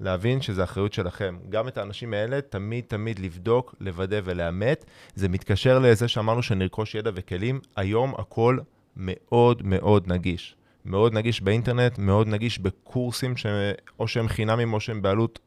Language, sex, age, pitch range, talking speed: Hebrew, male, 20-39, 95-120 Hz, 145 wpm